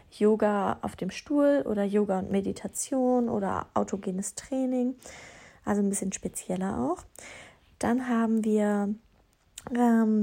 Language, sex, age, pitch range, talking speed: German, female, 20-39, 205-240 Hz, 115 wpm